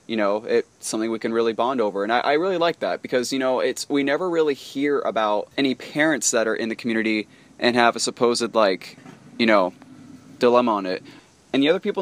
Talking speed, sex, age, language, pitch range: 225 wpm, male, 20-39, English, 115-135 Hz